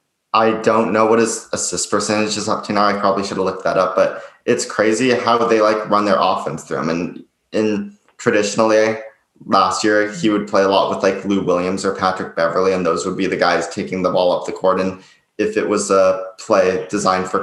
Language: English